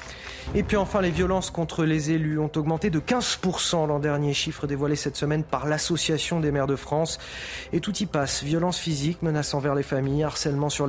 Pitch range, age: 145-175 Hz, 30-49